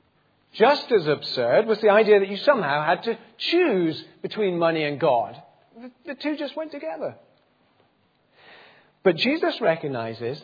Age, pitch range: 40-59, 160-245 Hz